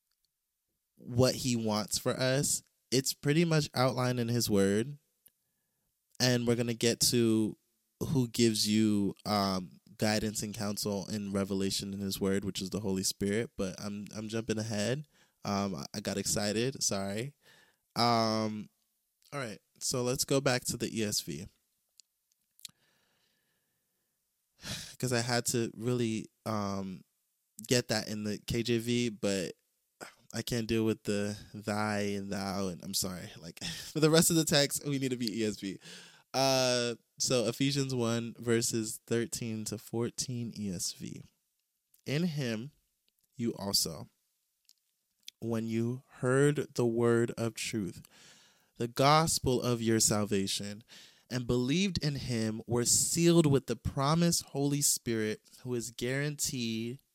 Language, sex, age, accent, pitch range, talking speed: English, male, 20-39, American, 105-130 Hz, 135 wpm